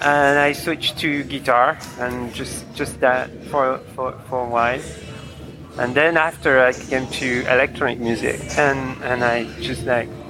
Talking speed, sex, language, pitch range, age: 155 wpm, male, English, 125-155 Hz, 30-49